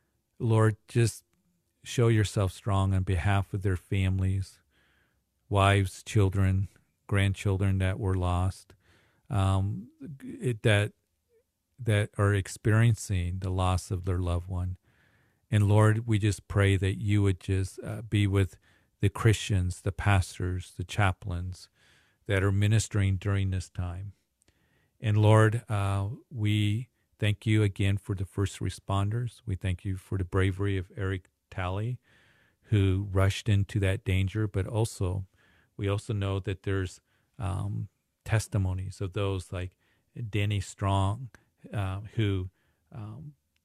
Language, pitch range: English, 95-110 Hz